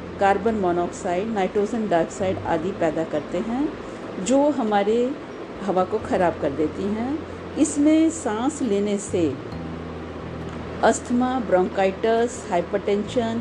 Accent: native